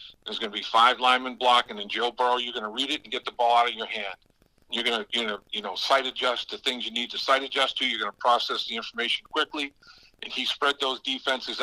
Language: English